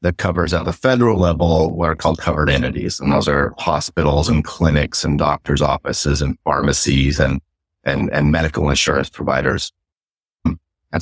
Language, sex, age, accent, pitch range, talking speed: English, male, 50-69, American, 75-90 Hz, 160 wpm